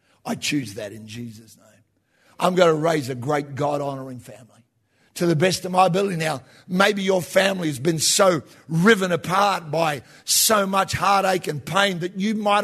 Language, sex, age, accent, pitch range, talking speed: English, male, 50-69, Australian, 150-220 Hz, 180 wpm